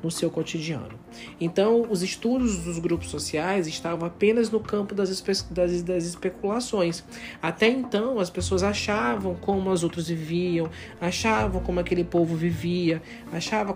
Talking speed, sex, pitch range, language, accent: 140 wpm, male, 160-195 Hz, Portuguese, Brazilian